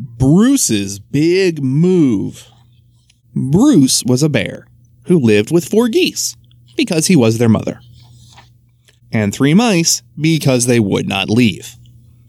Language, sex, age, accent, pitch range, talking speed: English, male, 20-39, American, 120-185 Hz, 120 wpm